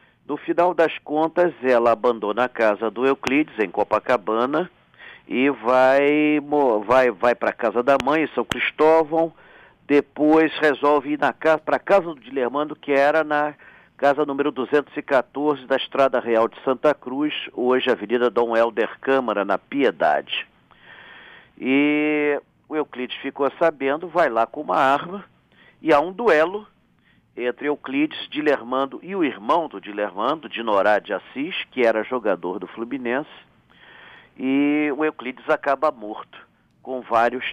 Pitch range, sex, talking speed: 125-155 Hz, male, 140 wpm